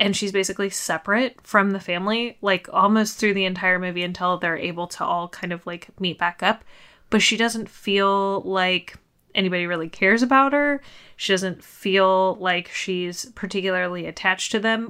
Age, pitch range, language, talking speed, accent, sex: 20-39, 180-205 Hz, English, 175 wpm, American, female